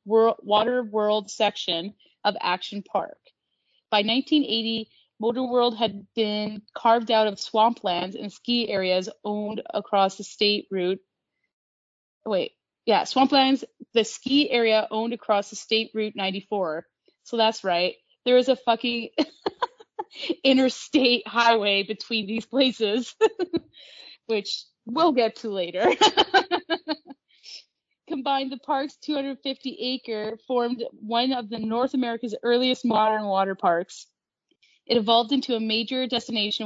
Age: 30-49